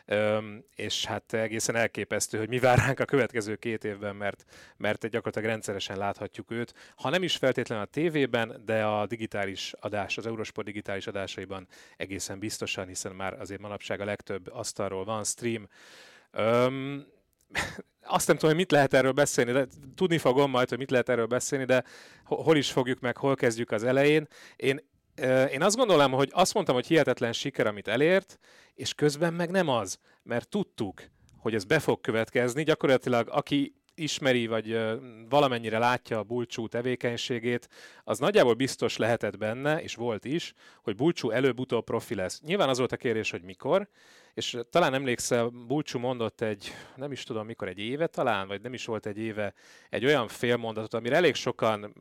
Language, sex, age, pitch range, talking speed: Hungarian, male, 30-49, 110-135 Hz, 170 wpm